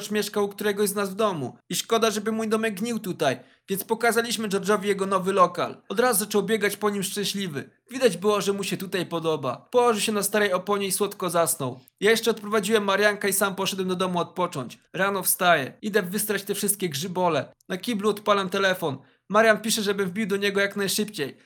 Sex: male